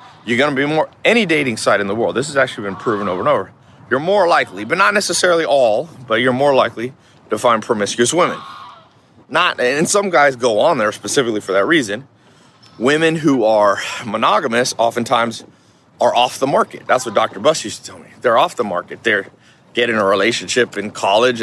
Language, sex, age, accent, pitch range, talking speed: English, male, 30-49, American, 110-145 Hz, 200 wpm